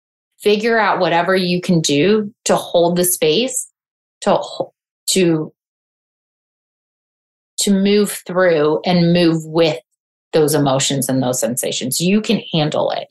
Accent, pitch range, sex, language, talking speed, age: American, 155-190 Hz, female, English, 125 wpm, 30-49